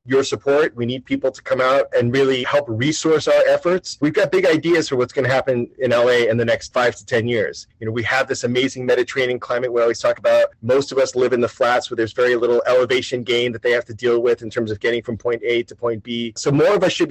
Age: 30-49